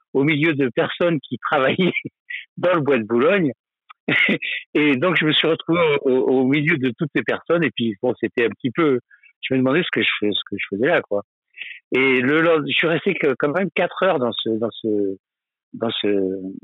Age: 60-79